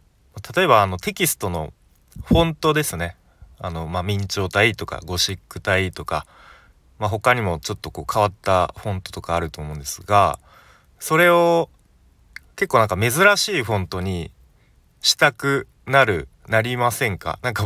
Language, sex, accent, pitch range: Japanese, male, native, 85-115 Hz